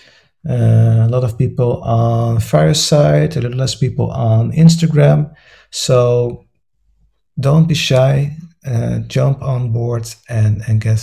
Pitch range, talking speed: 115-135 Hz, 130 wpm